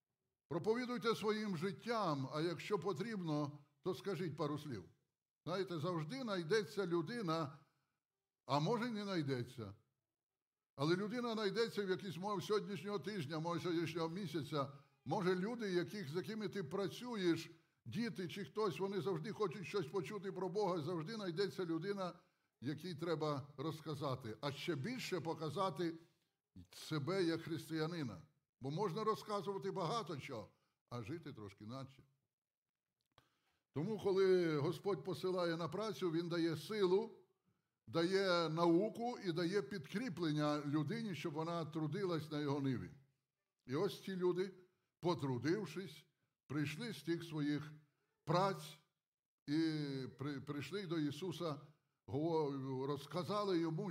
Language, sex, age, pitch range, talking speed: Ukrainian, male, 60-79, 150-195 Hz, 115 wpm